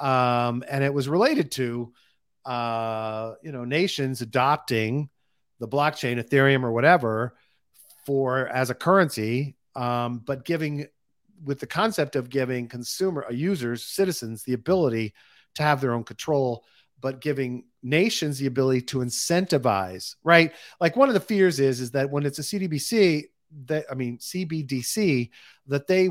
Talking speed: 150 wpm